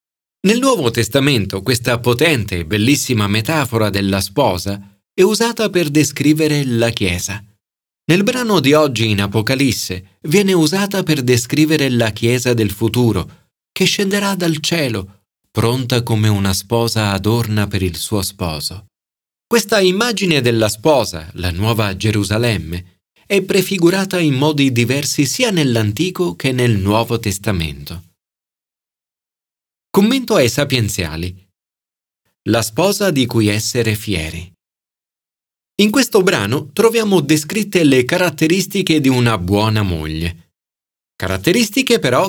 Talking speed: 120 wpm